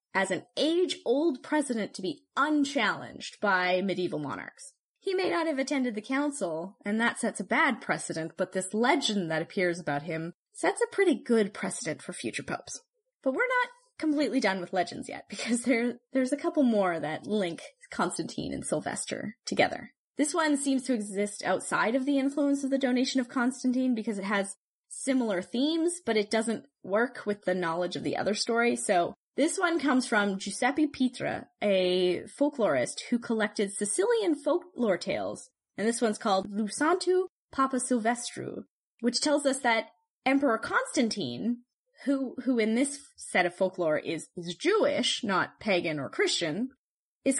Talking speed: 165 wpm